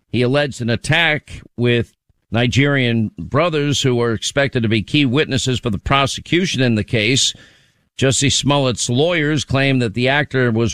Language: English